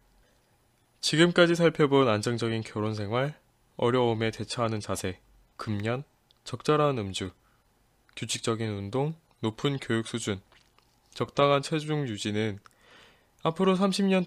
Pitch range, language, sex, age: 110-140 Hz, Korean, male, 20-39